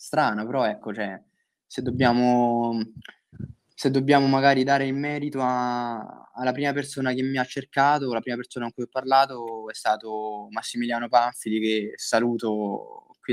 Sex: male